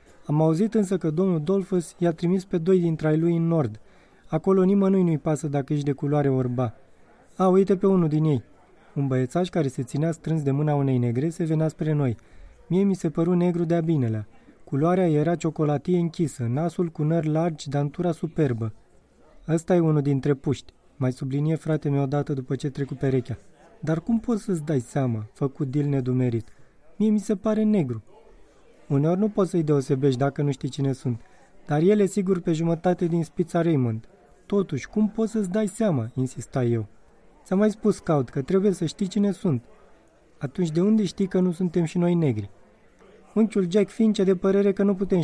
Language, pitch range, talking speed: Romanian, 140-185 Hz, 190 wpm